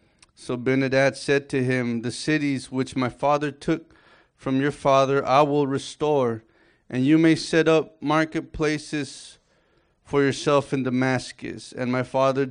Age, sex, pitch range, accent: 30-49, male, 130-145 Hz, American